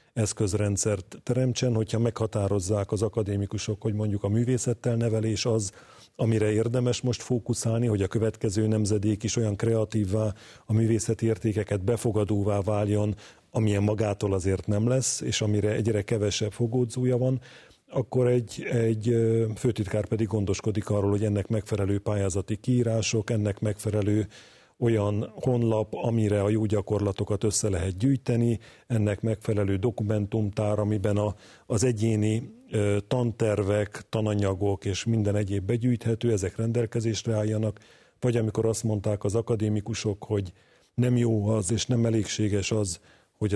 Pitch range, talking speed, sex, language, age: 105-115 Hz, 125 wpm, male, Hungarian, 40-59